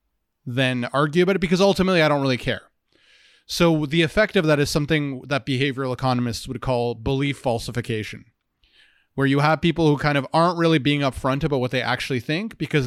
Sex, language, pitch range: male, English, 125-155 Hz